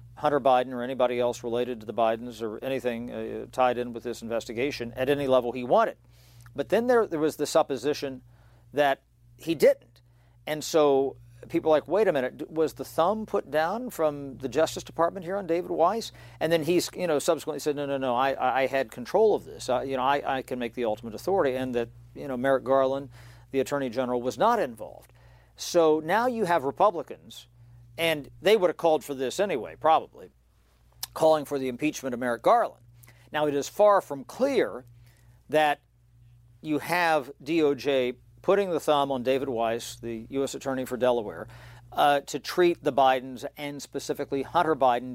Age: 50-69